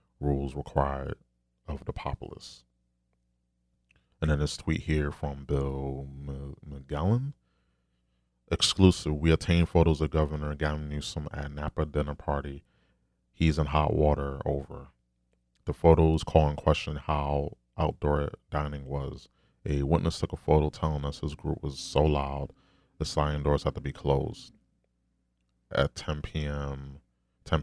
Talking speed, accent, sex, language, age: 135 wpm, American, male, English, 30-49